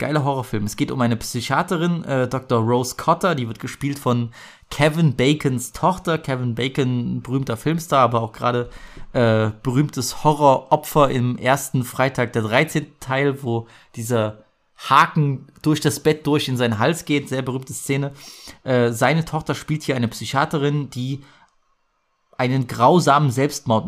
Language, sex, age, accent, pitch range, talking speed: German, male, 30-49, German, 120-155 Hz, 150 wpm